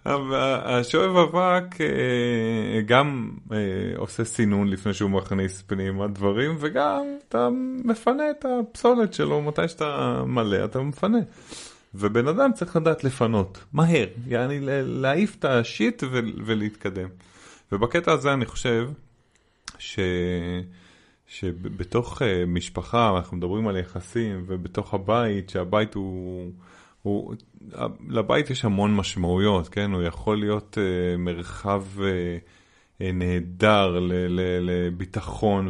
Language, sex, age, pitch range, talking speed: Hebrew, male, 30-49, 95-135 Hz, 105 wpm